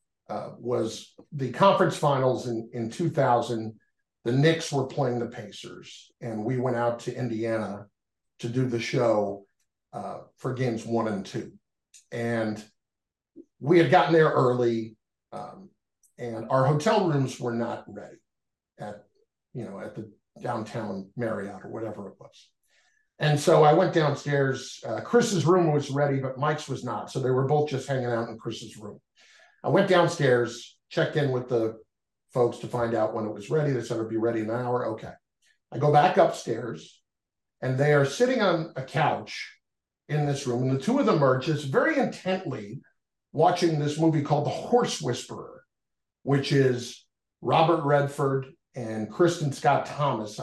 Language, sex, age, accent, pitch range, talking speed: English, male, 50-69, American, 120-155 Hz, 165 wpm